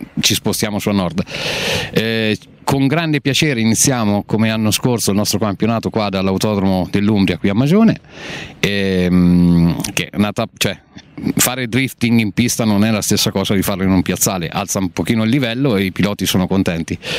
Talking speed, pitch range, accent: 175 wpm, 95-125 Hz, native